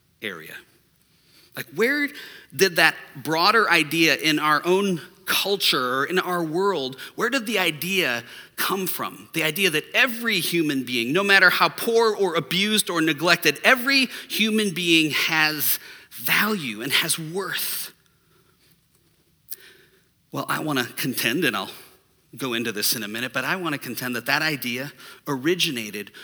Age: 40-59